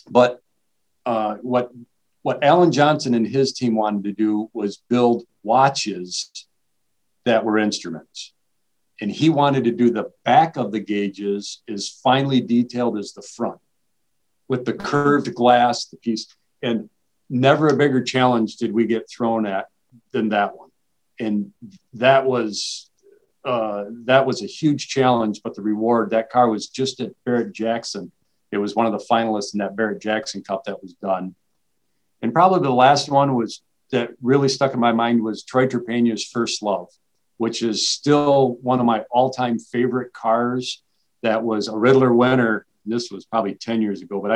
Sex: male